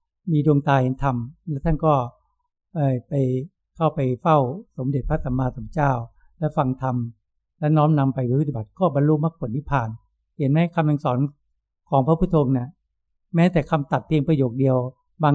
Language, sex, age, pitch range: Thai, male, 60-79, 130-165 Hz